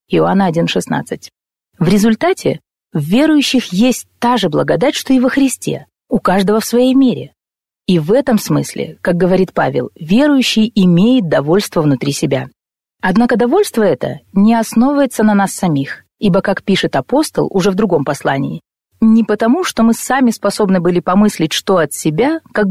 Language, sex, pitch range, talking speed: Russian, female, 185-255 Hz, 155 wpm